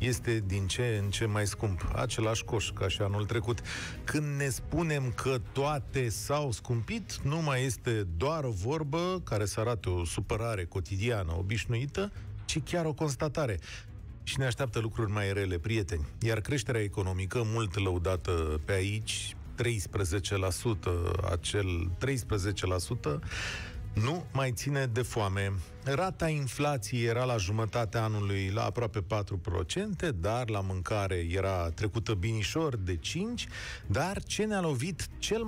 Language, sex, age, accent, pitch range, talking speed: Romanian, male, 40-59, native, 105-145 Hz, 135 wpm